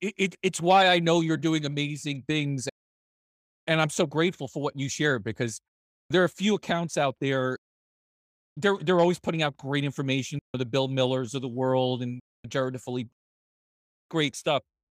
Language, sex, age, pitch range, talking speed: English, male, 40-59, 125-165 Hz, 175 wpm